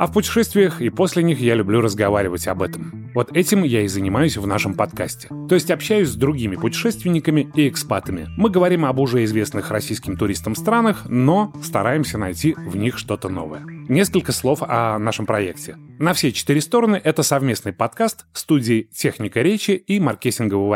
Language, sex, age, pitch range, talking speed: Russian, male, 20-39, 105-160 Hz, 170 wpm